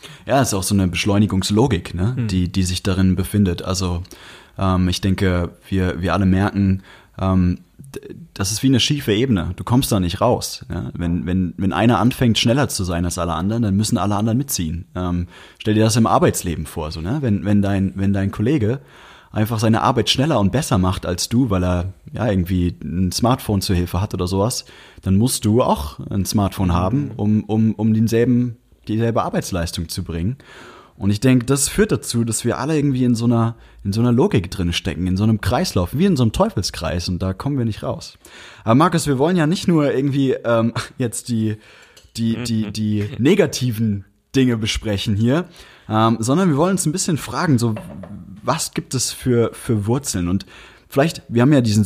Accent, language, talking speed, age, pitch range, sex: German, German, 200 wpm, 20-39, 95-120 Hz, male